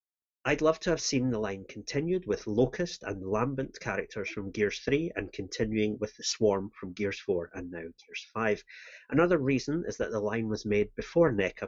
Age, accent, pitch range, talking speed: 30-49, British, 100-150 Hz, 195 wpm